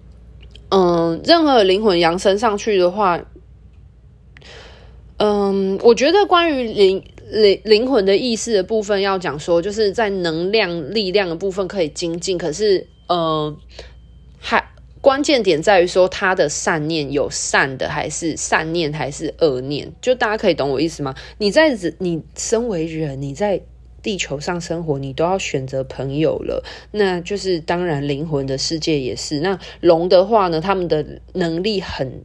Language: Chinese